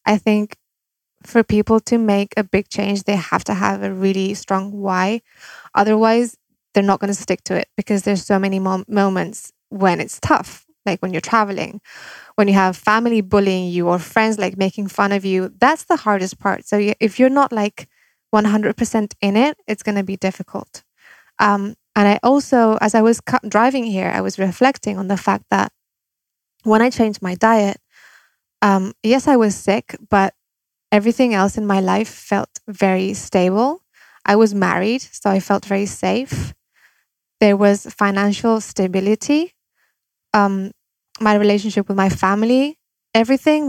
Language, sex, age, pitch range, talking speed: English, female, 20-39, 195-225 Hz, 165 wpm